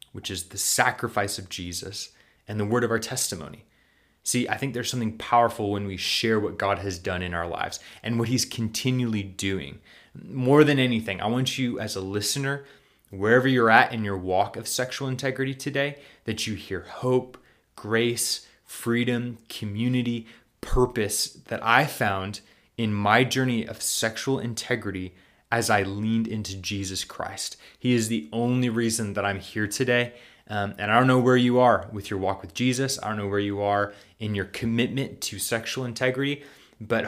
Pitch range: 100-125 Hz